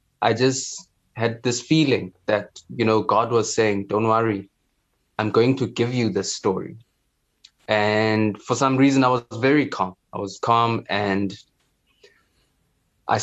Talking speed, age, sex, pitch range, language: 150 wpm, 20-39, male, 100-115 Hz, English